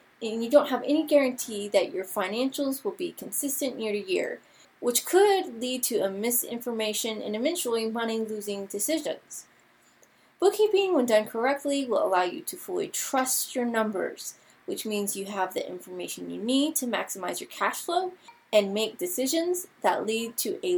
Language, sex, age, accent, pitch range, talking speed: English, female, 20-39, American, 215-310 Hz, 170 wpm